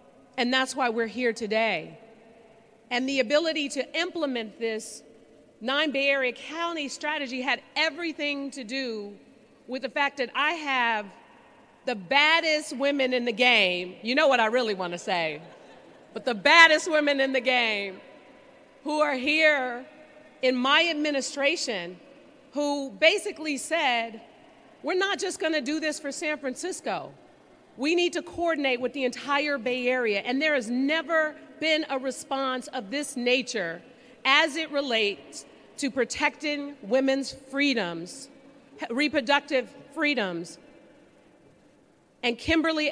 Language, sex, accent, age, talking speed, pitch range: English, female, American, 40-59, 135 wpm, 245-300 Hz